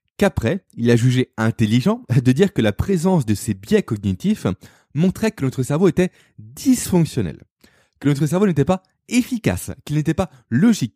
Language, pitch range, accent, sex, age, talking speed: French, 115-175 Hz, French, male, 20-39, 165 wpm